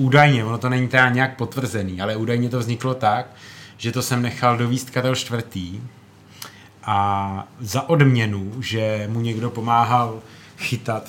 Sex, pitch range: male, 105-125 Hz